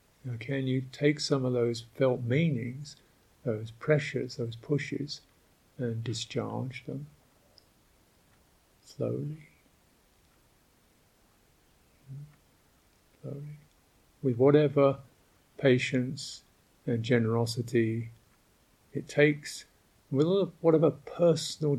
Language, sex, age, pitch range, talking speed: English, male, 50-69, 115-145 Hz, 80 wpm